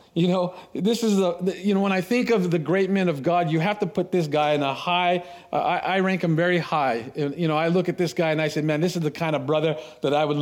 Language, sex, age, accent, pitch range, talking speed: English, male, 40-59, American, 160-190 Hz, 300 wpm